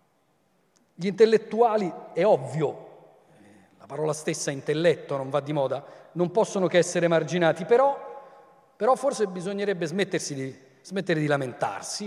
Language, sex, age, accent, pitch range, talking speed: Italian, male, 40-59, native, 170-210 Hz, 125 wpm